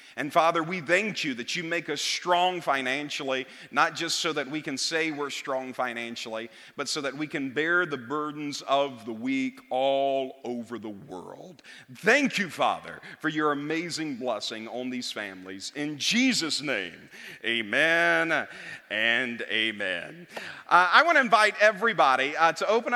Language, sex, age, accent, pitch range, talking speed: English, male, 40-59, American, 145-195 Hz, 160 wpm